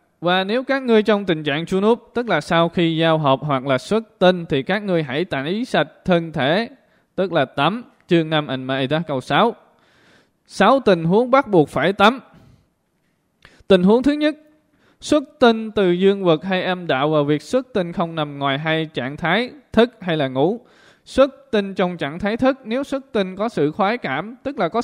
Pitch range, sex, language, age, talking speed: 155-220 Hz, male, Vietnamese, 20-39, 200 wpm